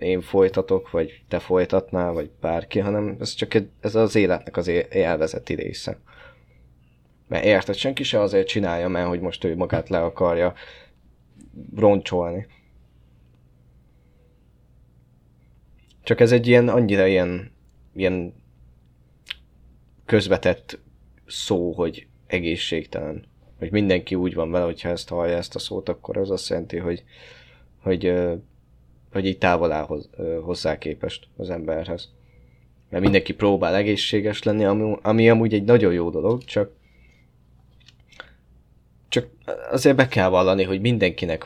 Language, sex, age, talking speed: Hungarian, male, 20-39, 125 wpm